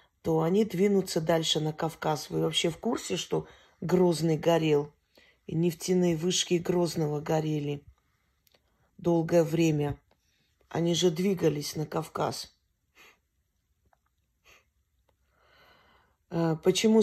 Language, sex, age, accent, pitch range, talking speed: Russian, female, 40-59, native, 150-175 Hz, 90 wpm